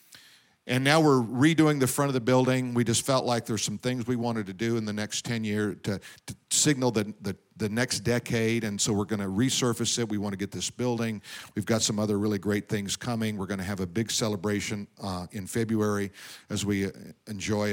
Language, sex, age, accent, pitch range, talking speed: English, male, 50-69, American, 105-125 Hz, 225 wpm